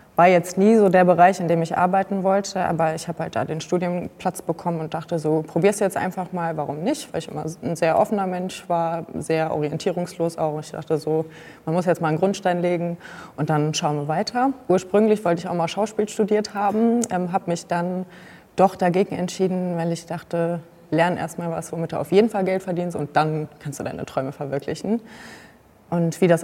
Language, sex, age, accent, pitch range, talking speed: German, female, 20-39, German, 160-185 Hz, 210 wpm